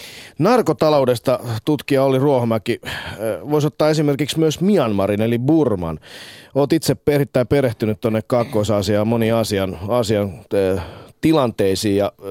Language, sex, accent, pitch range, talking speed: Finnish, male, native, 105-140 Hz, 105 wpm